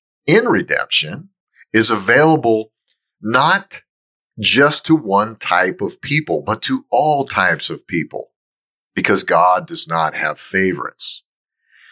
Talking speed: 115 wpm